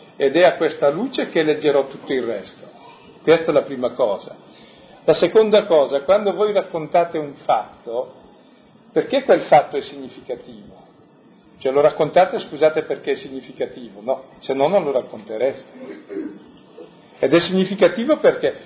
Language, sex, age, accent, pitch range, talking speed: Italian, male, 50-69, native, 135-195 Hz, 145 wpm